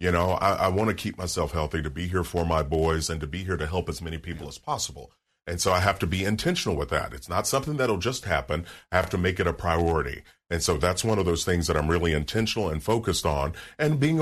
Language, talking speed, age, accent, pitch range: English, 270 wpm, 40-59, American, 85-110 Hz